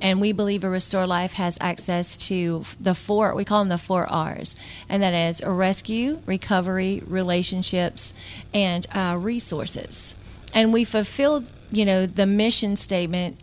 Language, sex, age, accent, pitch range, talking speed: English, female, 40-59, American, 185-205 Hz, 150 wpm